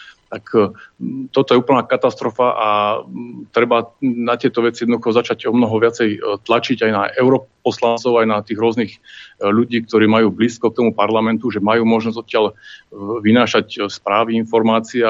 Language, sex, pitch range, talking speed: Slovak, male, 105-115 Hz, 145 wpm